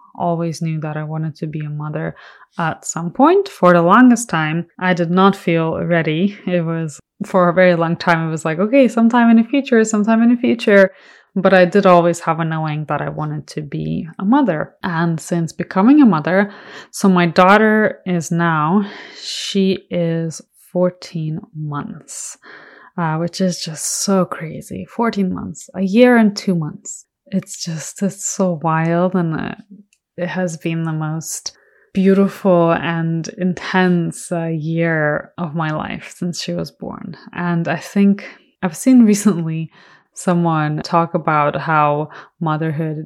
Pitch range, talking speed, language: 165-205 Hz, 160 wpm, English